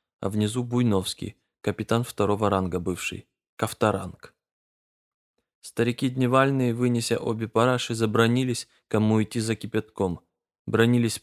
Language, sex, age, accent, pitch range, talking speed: Russian, male, 20-39, native, 105-125 Hz, 100 wpm